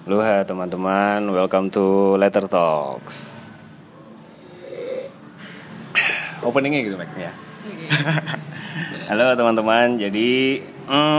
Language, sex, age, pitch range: Indonesian, male, 20-39, 100-120 Hz